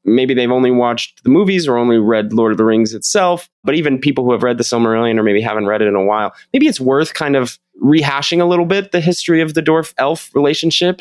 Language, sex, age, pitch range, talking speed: English, male, 20-39, 110-160 Hz, 250 wpm